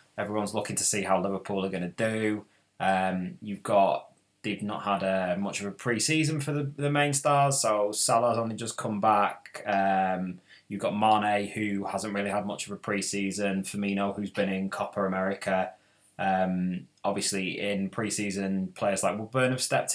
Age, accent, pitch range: 20-39, British, 95-110 Hz